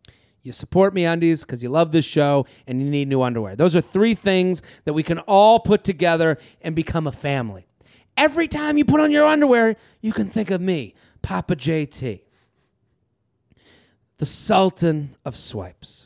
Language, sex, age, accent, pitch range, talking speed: English, male, 30-49, American, 135-180 Hz, 170 wpm